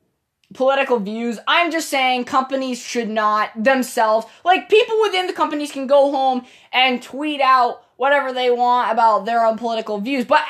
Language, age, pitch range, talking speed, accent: English, 10-29, 215-285 Hz, 165 wpm, American